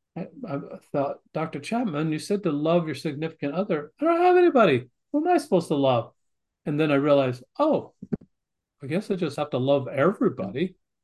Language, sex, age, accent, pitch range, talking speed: English, male, 40-59, American, 140-190 Hz, 185 wpm